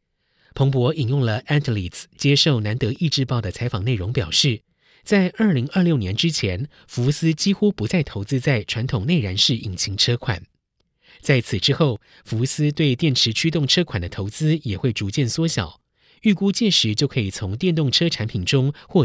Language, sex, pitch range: Chinese, male, 110-160 Hz